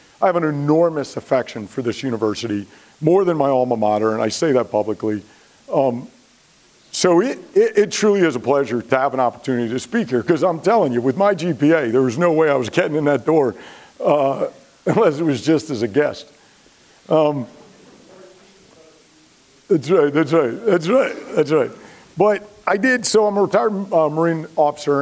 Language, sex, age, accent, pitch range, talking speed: English, male, 50-69, American, 130-175 Hz, 185 wpm